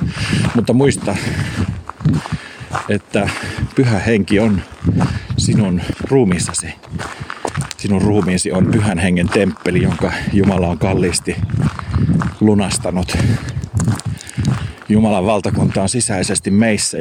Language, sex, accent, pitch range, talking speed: Finnish, male, native, 95-115 Hz, 85 wpm